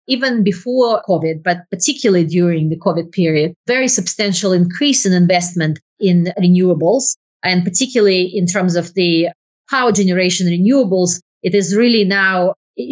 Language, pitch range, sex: English, 180-210 Hz, female